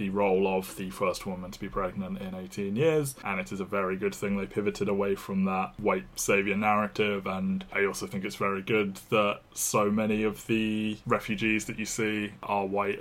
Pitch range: 100-125 Hz